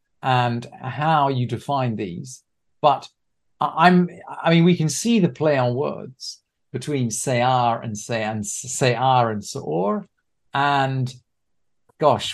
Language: English